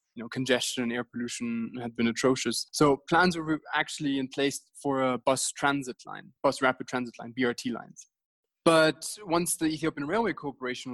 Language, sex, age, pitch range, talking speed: English, male, 20-39, 125-145 Hz, 175 wpm